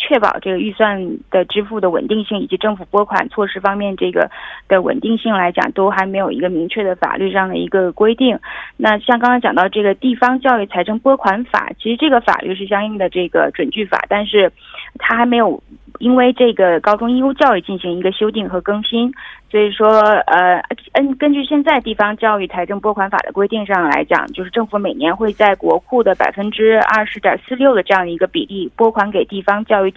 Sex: female